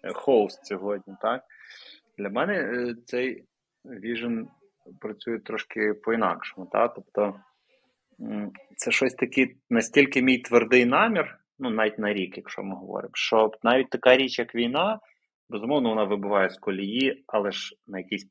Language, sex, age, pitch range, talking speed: Ukrainian, male, 20-39, 100-125 Hz, 135 wpm